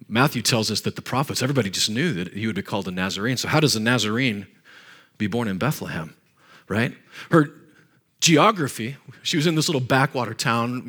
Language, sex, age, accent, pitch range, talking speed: English, male, 40-59, American, 115-150 Hz, 195 wpm